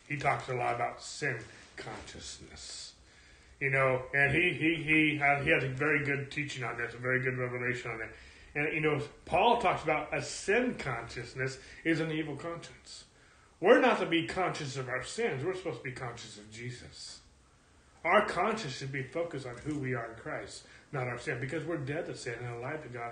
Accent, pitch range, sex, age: American, 125-165 Hz, male, 30-49